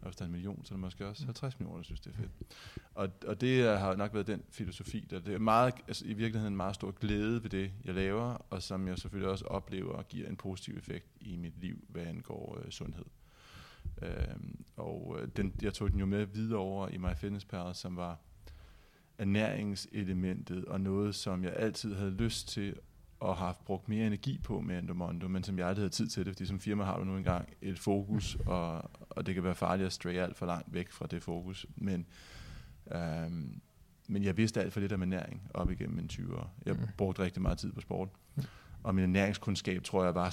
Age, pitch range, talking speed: 20-39, 90-105 Hz, 215 wpm